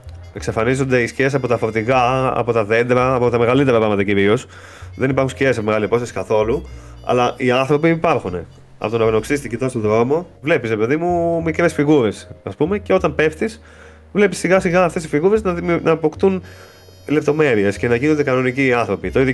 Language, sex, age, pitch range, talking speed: Greek, male, 30-49, 105-145 Hz, 195 wpm